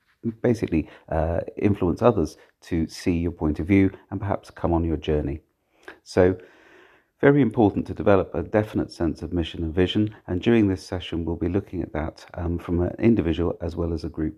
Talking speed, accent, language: 190 wpm, British, English